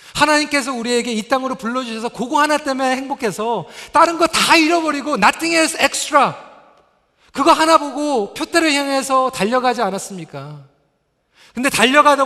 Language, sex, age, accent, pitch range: Korean, male, 40-59, native, 145-230 Hz